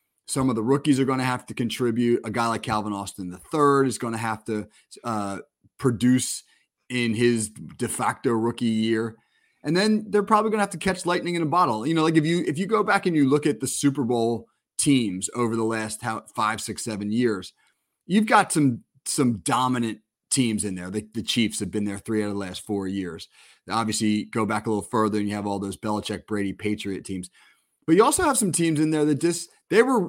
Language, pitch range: English, 110-140 Hz